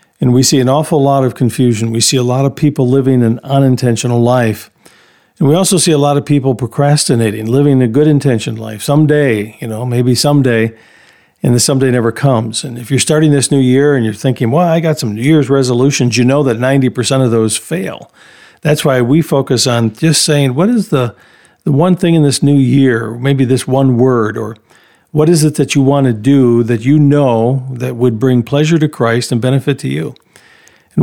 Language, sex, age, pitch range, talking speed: English, male, 50-69, 125-150 Hz, 210 wpm